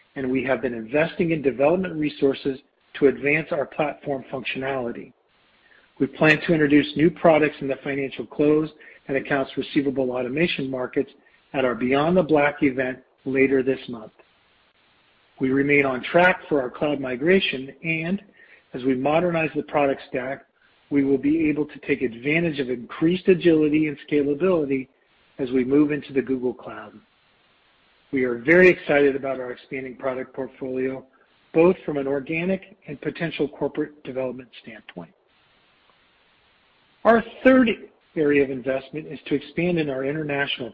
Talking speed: 145 wpm